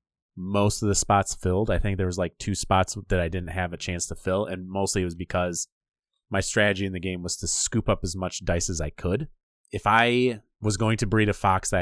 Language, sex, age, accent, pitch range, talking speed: English, male, 30-49, American, 90-105 Hz, 250 wpm